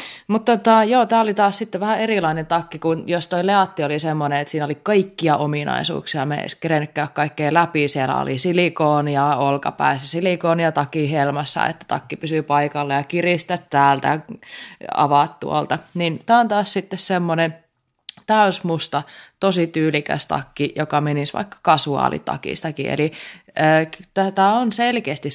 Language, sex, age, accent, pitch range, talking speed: Finnish, female, 20-39, native, 145-180 Hz, 145 wpm